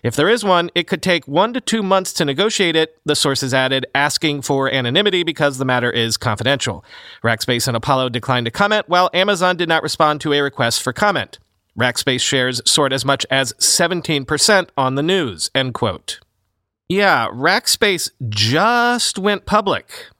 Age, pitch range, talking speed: 40-59, 120-165 Hz, 170 wpm